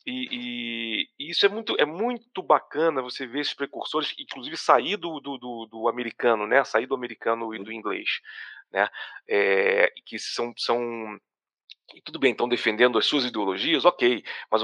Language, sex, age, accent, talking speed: Portuguese, male, 40-59, Brazilian, 170 wpm